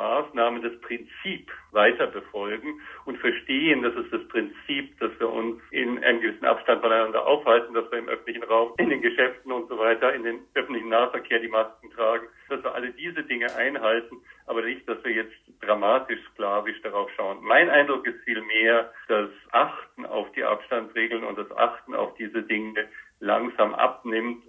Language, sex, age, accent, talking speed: German, male, 50-69, German, 165 wpm